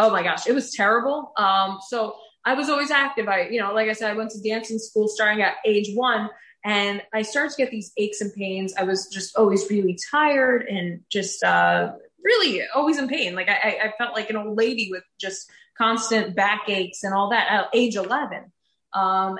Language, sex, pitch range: English, female, 195-225 Hz